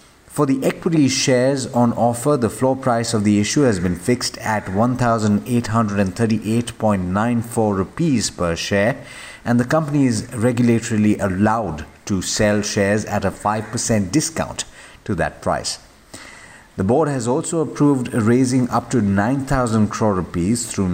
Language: English